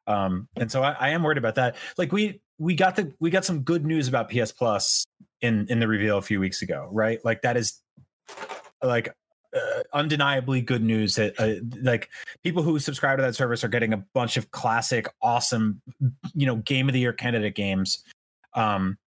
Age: 30-49